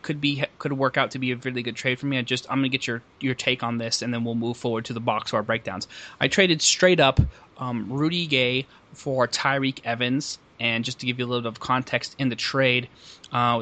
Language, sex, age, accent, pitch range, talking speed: English, male, 20-39, American, 115-135 Hz, 250 wpm